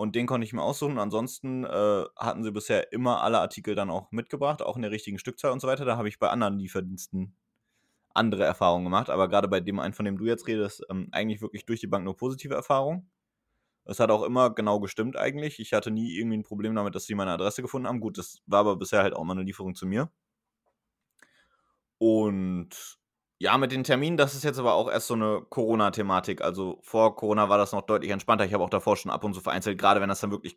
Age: 20-39